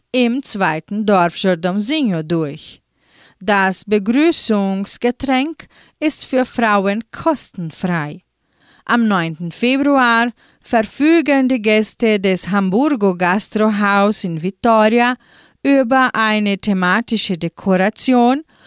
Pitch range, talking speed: 190-255 Hz, 80 wpm